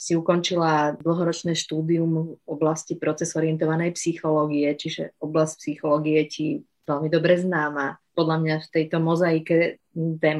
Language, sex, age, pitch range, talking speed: Slovak, female, 30-49, 160-185 Hz, 125 wpm